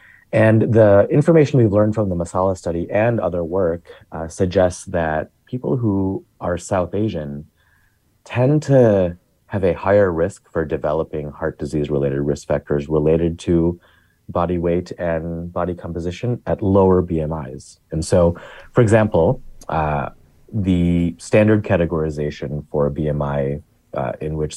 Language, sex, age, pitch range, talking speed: English, male, 30-49, 75-100 Hz, 140 wpm